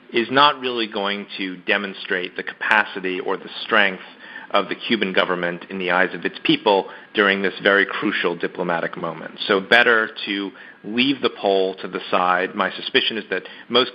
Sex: male